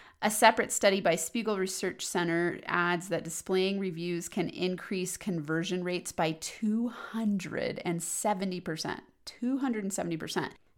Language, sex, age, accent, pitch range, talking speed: English, female, 30-49, American, 165-195 Hz, 100 wpm